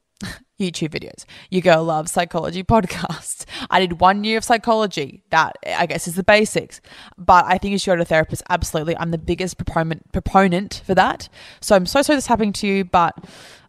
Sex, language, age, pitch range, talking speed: female, English, 20-39, 165-200 Hz, 190 wpm